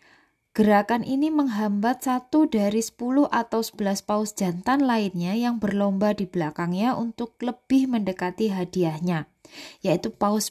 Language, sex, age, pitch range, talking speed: Indonesian, female, 20-39, 190-250 Hz, 120 wpm